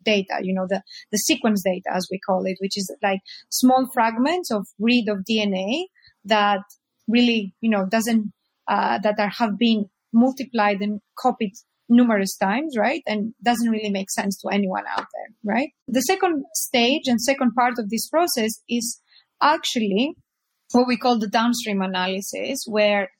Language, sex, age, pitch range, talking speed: English, female, 20-39, 210-255 Hz, 165 wpm